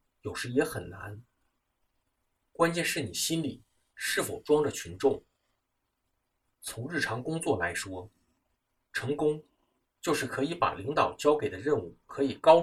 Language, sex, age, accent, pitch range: Chinese, male, 50-69, native, 120-150 Hz